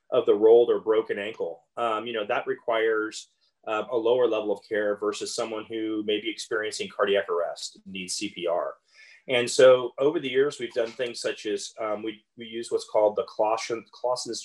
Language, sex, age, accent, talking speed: English, male, 30-49, American, 185 wpm